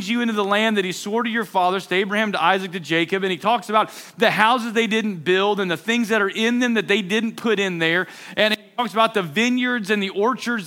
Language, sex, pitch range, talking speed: English, male, 195-235 Hz, 265 wpm